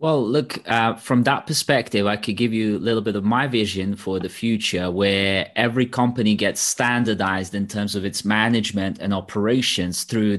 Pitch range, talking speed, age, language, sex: 100-125 Hz, 185 wpm, 30-49, English, male